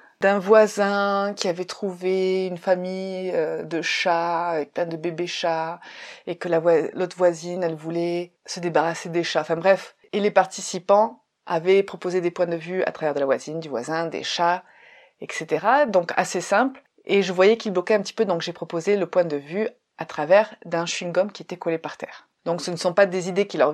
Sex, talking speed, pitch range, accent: female, 210 wpm, 175-220 Hz, French